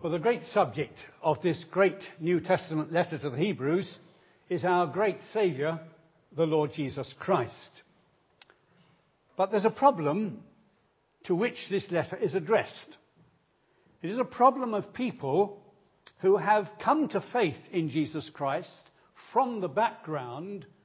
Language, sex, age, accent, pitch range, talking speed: English, male, 60-79, British, 155-205 Hz, 140 wpm